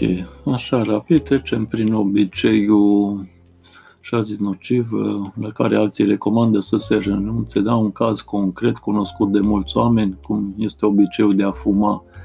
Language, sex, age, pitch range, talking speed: Romanian, male, 50-69, 95-110 Hz, 140 wpm